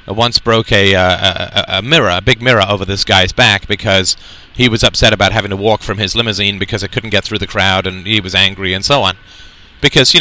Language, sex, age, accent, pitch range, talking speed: English, male, 30-49, American, 100-120 Hz, 240 wpm